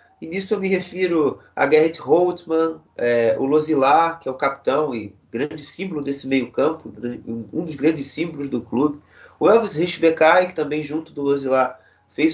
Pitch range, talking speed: 140-170 Hz, 175 wpm